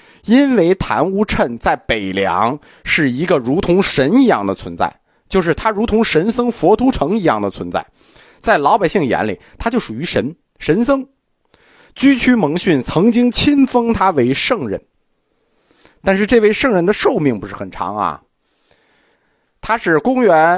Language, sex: Chinese, male